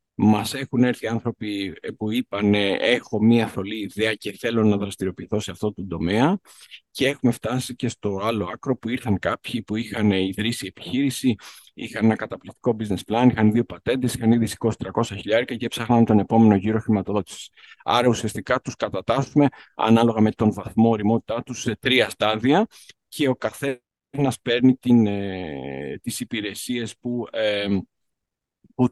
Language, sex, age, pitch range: Greek, male, 50-69, 105-125 Hz